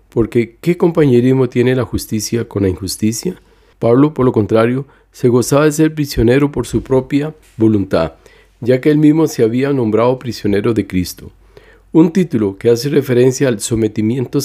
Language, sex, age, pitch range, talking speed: Spanish, male, 40-59, 110-145 Hz, 160 wpm